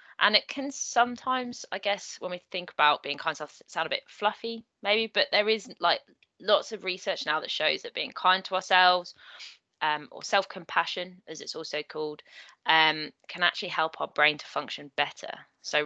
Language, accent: English, British